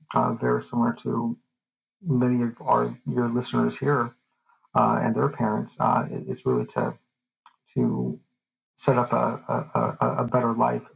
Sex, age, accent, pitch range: male, 40-59, American, 115-130 Hz